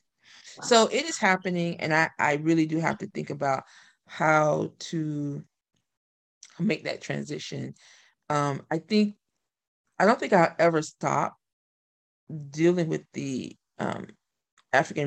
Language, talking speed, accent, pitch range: English, 125 wpm, American, 150-190 Hz